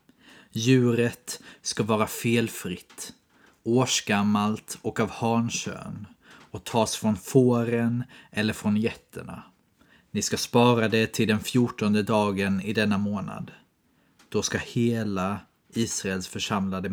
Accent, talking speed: native, 110 wpm